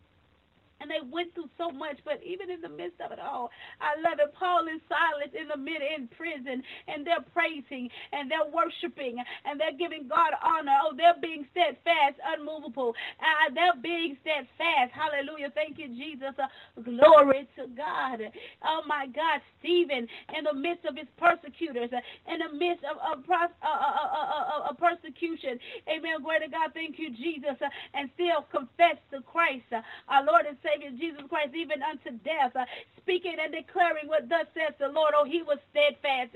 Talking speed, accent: 185 wpm, American